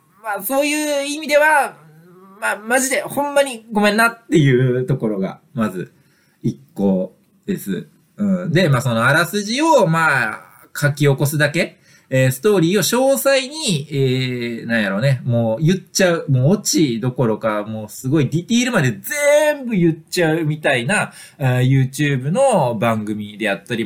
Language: Japanese